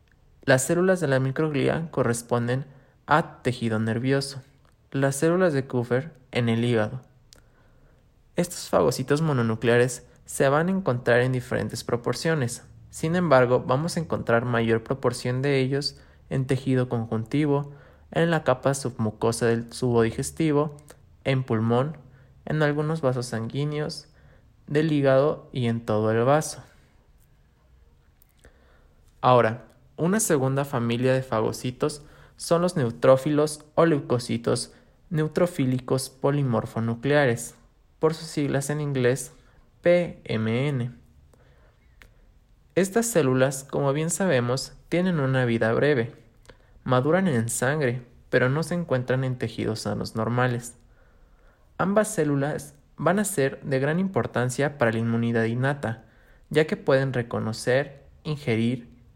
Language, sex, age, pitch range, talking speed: Spanish, male, 20-39, 115-150 Hz, 115 wpm